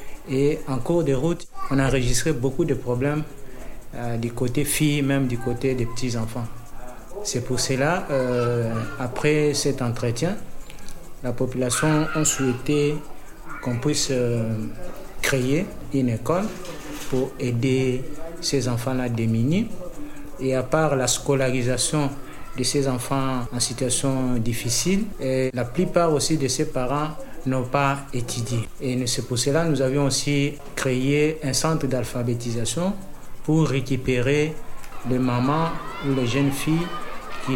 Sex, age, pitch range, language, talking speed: male, 50-69, 125-150 Hz, French, 130 wpm